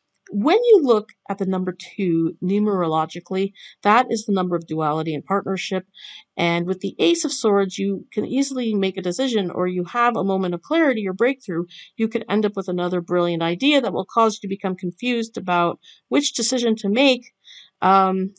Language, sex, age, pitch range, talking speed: English, female, 50-69, 180-230 Hz, 190 wpm